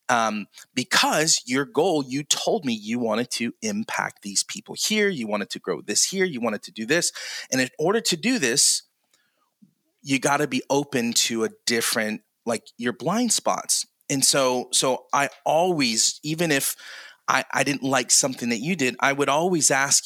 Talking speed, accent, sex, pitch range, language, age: 185 wpm, American, male, 115-180 Hz, English, 30-49